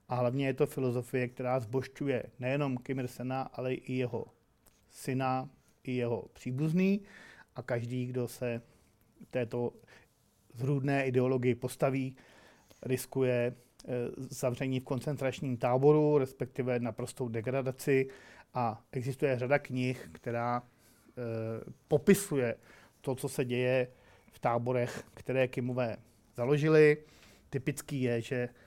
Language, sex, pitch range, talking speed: Czech, male, 120-135 Hz, 105 wpm